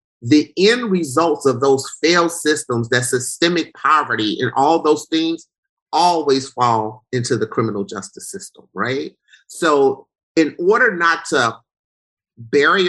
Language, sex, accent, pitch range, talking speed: English, male, American, 125-165 Hz, 130 wpm